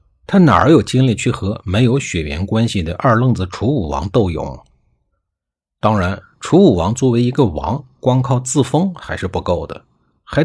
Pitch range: 90-135 Hz